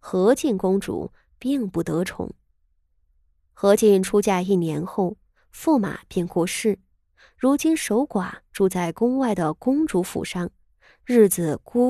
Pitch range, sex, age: 170-230 Hz, female, 20-39